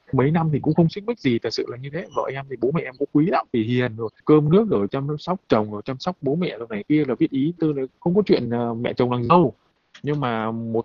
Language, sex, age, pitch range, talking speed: Vietnamese, male, 20-39, 115-150 Hz, 300 wpm